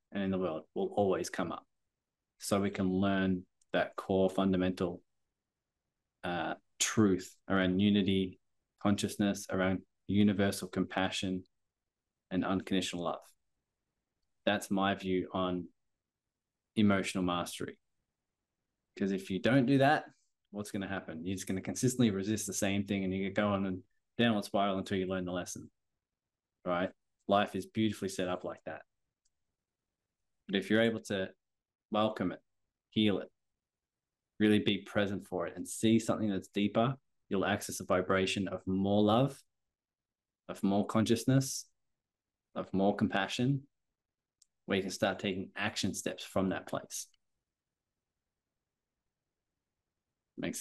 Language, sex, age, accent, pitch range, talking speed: English, male, 20-39, Australian, 95-110 Hz, 135 wpm